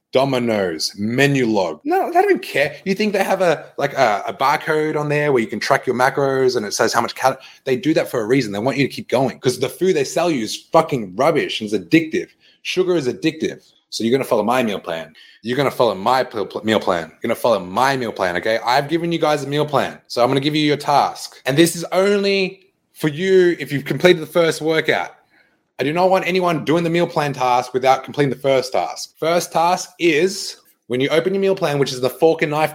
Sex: male